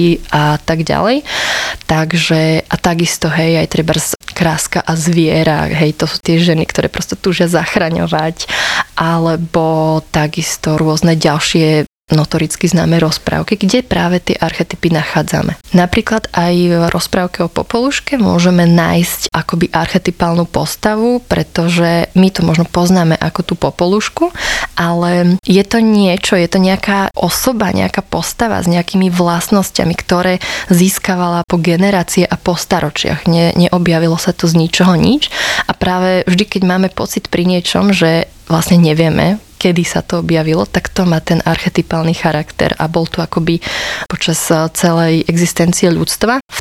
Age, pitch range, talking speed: 20-39, 165-185 Hz, 140 wpm